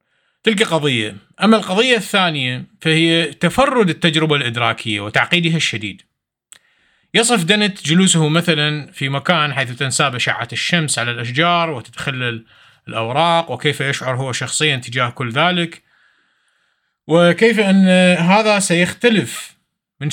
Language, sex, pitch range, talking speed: Arabic, male, 130-175 Hz, 110 wpm